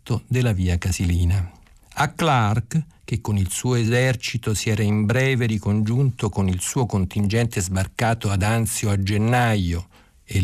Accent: native